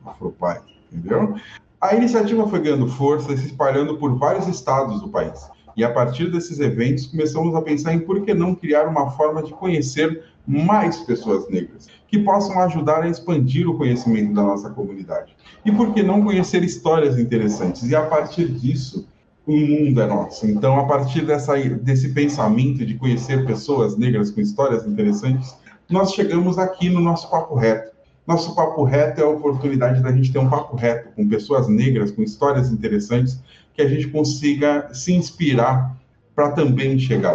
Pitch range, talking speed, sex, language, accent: 125-160 Hz, 170 wpm, male, Portuguese, Brazilian